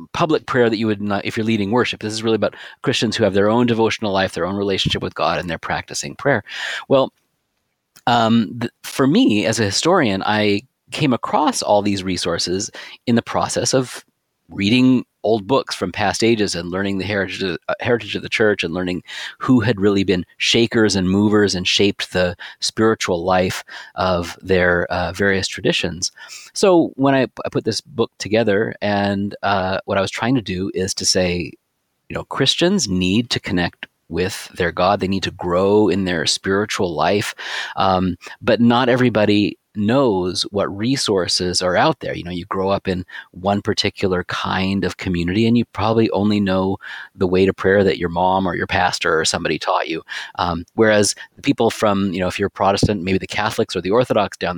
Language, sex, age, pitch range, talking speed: English, male, 30-49, 95-110 Hz, 190 wpm